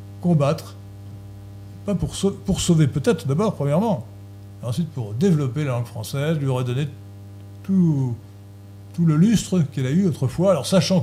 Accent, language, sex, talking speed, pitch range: French, French, male, 160 wpm, 100-155 Hz